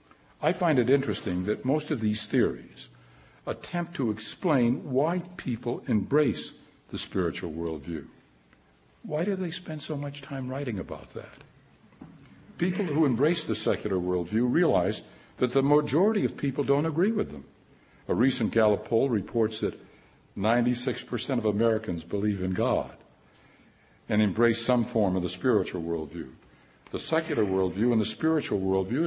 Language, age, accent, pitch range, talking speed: English, 60-79, American, 100-135 Hz, 145 wpm